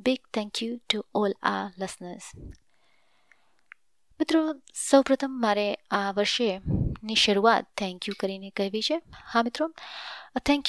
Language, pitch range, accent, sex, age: English, 200-255 Hz, Indian, female, 20-39